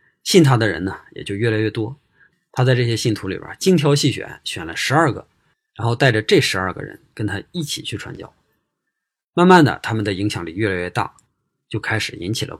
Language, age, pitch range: Chinese, 20-39, 100-145 Hz